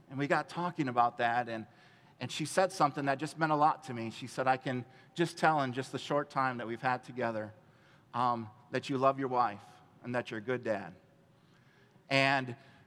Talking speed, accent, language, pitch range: 215 wpm, American, English, 130-170 Hz